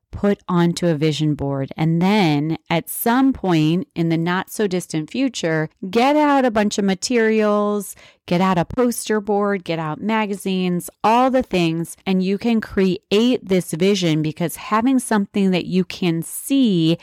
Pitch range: 160-205 Hz